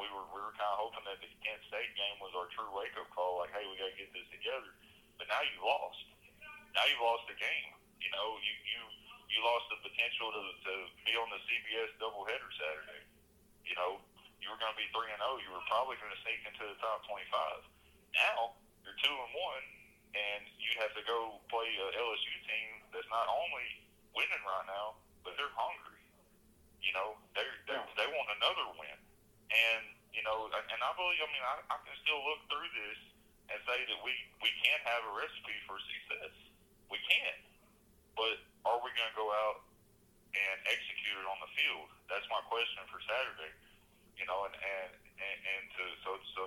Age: 40-59